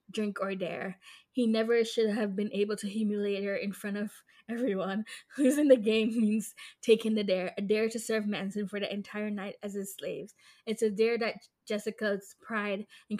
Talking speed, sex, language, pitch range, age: 190 wpm, female, English, 205-255 Hz, 10-29